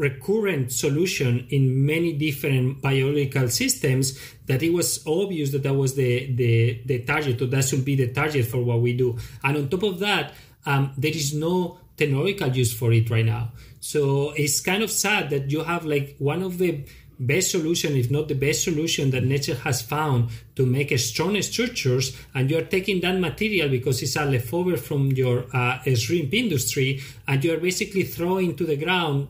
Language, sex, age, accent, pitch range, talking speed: English, male, 30-49, Spanish, 130-160 Hz, 190 wpm